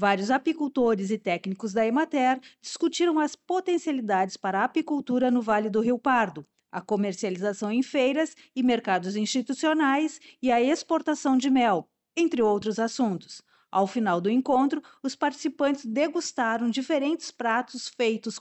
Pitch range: 215-270 Hz